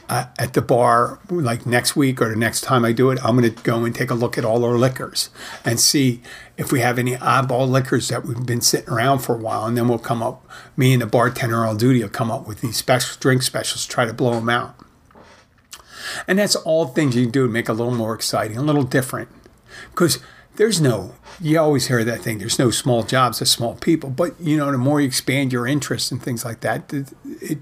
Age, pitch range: 50-69, 120-150 Hz